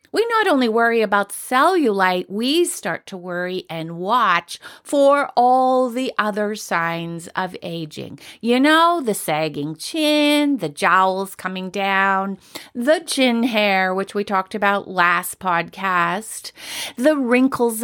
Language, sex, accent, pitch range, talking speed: English, female, American, 185-260 Hz, 130 wpm